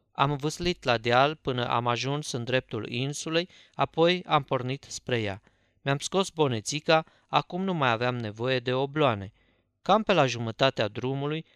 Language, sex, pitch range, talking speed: Romanian, male, 115-150 Hz, 155 wpm